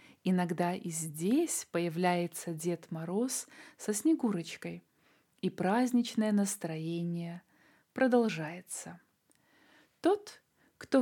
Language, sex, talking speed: Russian, female, 75 wpm